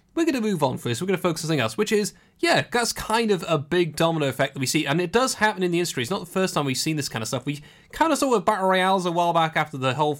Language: English